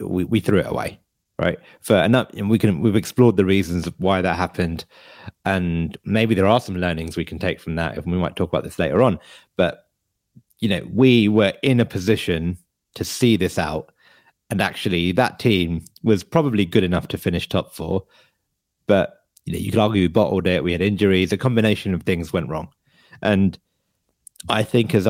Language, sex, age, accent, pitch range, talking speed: English, male, 30-49, British, 90-110 Hz, 200 wpm